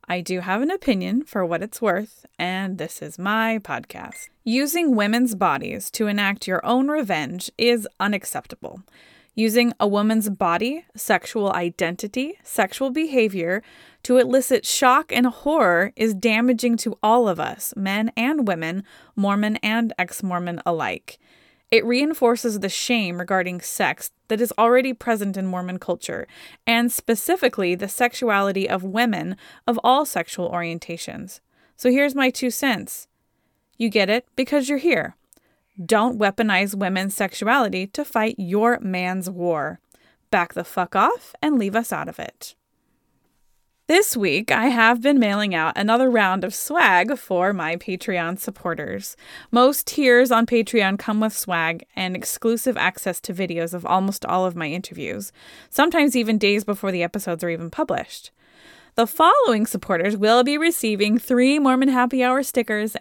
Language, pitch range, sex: English, 190-250 Hz, female